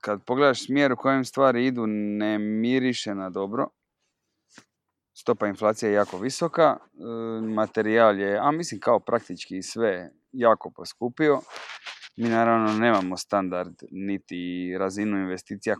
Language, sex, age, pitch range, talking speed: Croatian, male, 20-39, 100-120 Hz, 120 wpm